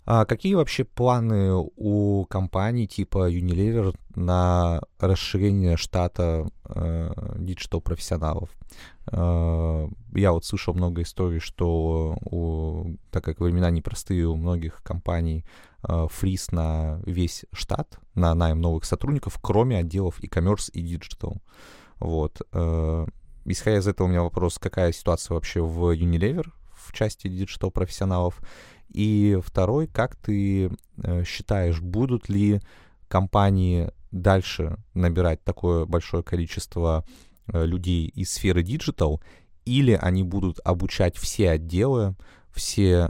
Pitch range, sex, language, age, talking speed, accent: 85-100 Hz, male, Russian, 20-39, 110 wpm, native